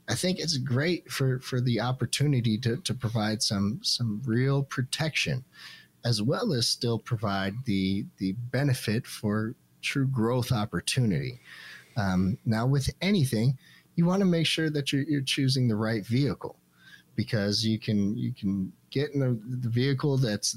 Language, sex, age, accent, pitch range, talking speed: English, male, 40-59, American, 105-135 Hz, 160 wpm